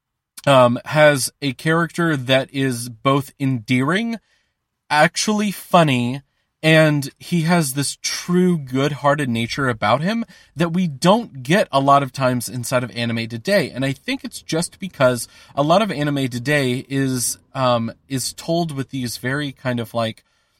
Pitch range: 125-160 Hz